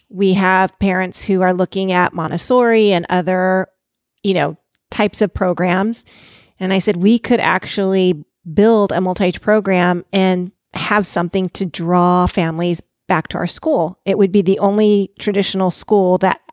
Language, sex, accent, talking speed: English, female, American, 155 wpm